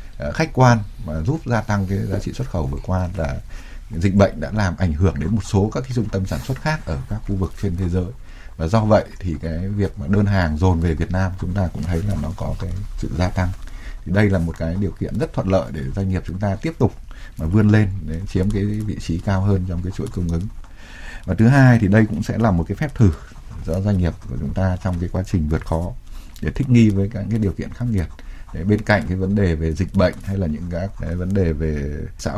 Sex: male